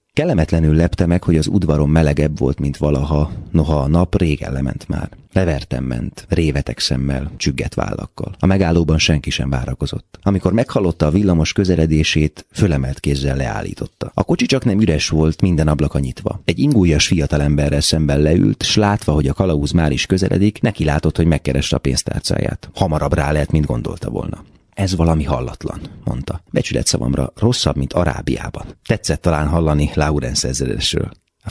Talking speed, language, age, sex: 160 wpm, Hungarian, 30-49, male